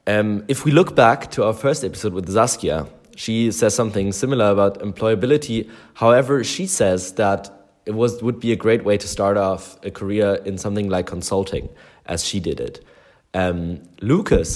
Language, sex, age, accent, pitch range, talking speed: English, male, 20-39, German, 90-115 Hz, 175 wpm